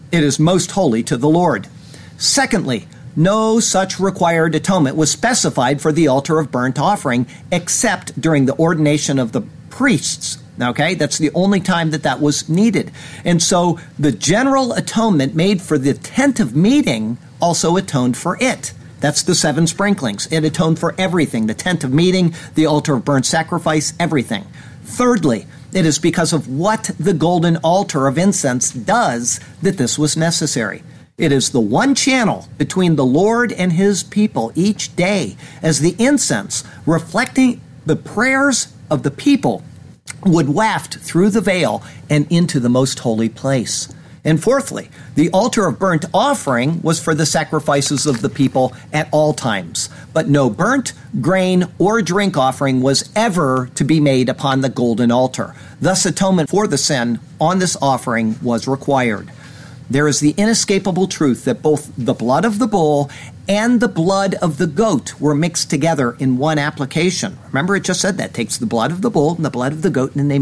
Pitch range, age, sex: 140-185 Hz, 50-69, male